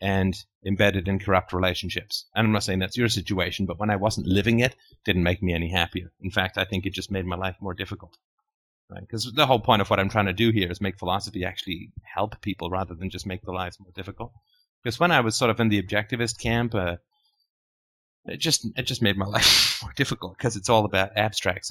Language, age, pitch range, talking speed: English, 30-49, 95-115 Hz, 240 wpm